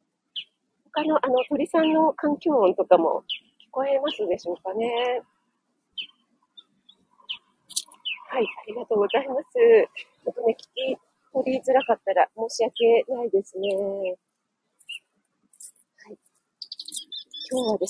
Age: 40-59